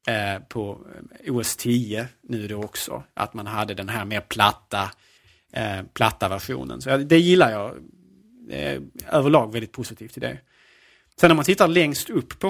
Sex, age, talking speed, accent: male, 30-49, 160 wpm, Norwegian